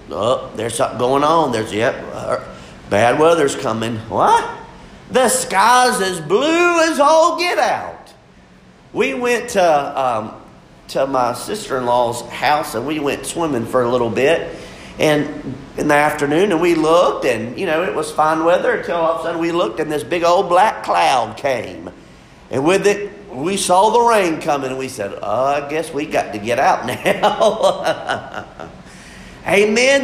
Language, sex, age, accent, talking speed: English, male, 50-69, American, 170 wpm